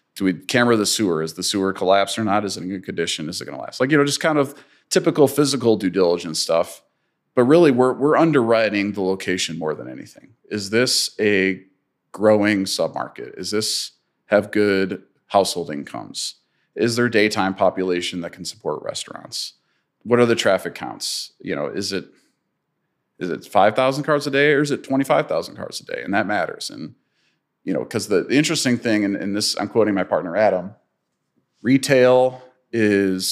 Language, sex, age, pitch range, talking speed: English, male, 40-59, 95-130 Hz, 185 wpm